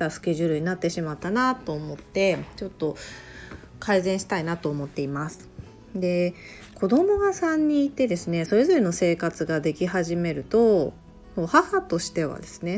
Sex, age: female, 30-49